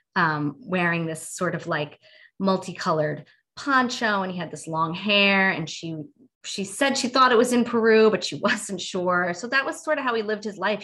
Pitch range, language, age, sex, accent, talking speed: 160-195 Hz, English, 20-39, female, American, 210 wpm